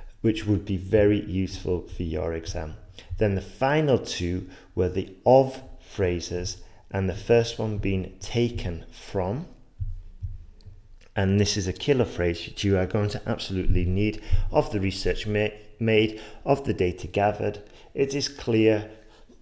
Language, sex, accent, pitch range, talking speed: English, male, British, 90-110 Hz, 145 wpm